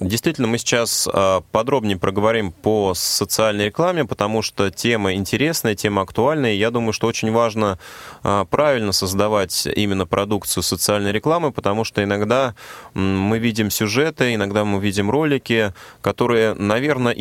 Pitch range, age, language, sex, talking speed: 95-120 Hz, 20-39, Russian, male, 140 wpm